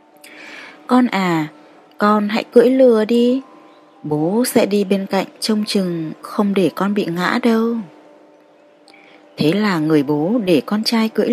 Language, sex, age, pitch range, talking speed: Vietnamese, female, 20-39, 160-230 Hz, 150 wpm